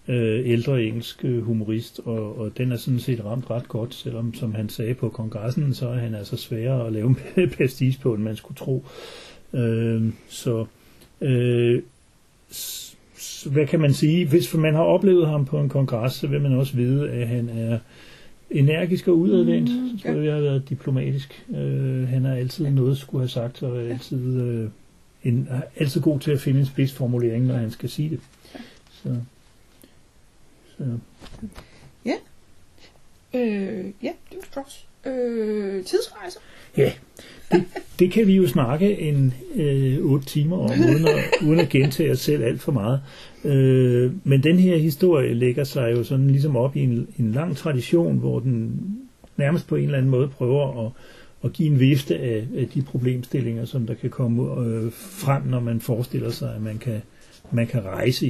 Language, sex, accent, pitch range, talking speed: Danish, male, native, 120-150 Hz, 170 wpm